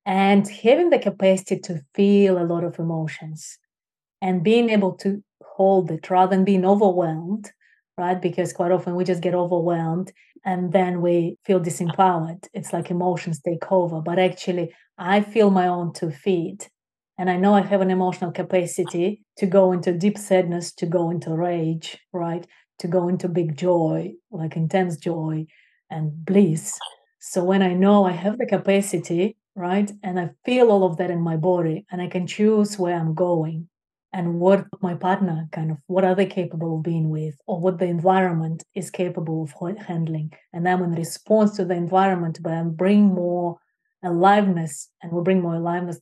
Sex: female